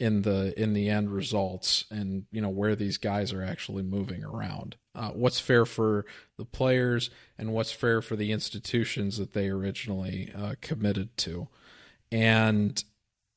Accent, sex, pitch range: American, male, 105-125 Hz